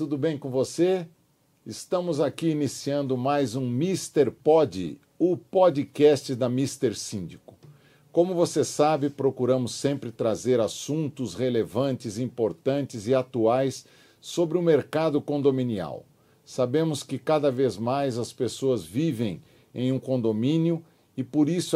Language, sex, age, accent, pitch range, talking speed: Portuguese, male, 50-69, Brazilian, 125-150 Hz, 125 wpm